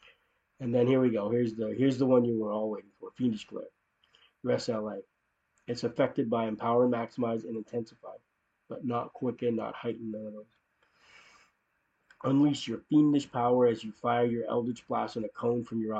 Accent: American